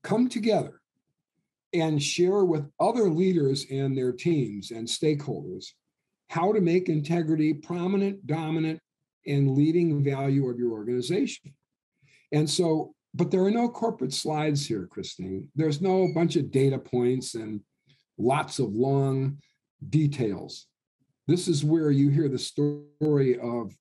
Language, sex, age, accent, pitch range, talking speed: English, male, 50-69, American, 115-150 Hz, 135 wpm